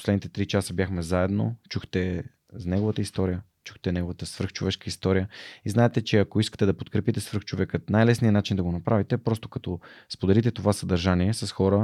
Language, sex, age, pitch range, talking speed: Bulgarian, male, 20-39, 90-110 Hz, 165 wpm